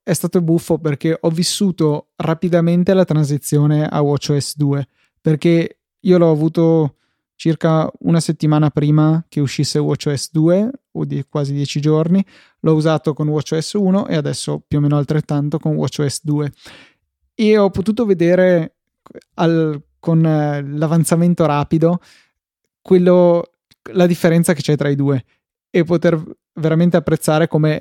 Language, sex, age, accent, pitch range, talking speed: Italian, male, 20-39, native, 145-170 Hz, 145 wpm